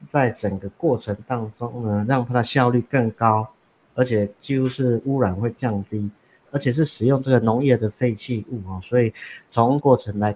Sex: male